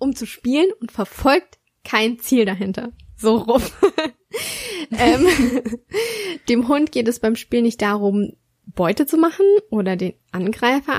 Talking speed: 135 wpm